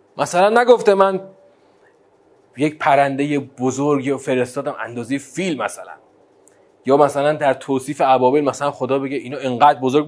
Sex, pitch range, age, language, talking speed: male, 160-255 Hz, 30-49, Persian, 125 wpm